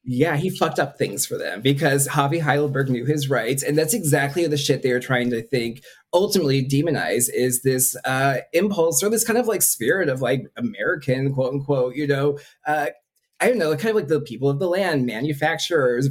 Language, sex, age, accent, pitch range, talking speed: English, male, 20-39, American, 125-150 Hz, 205 wpm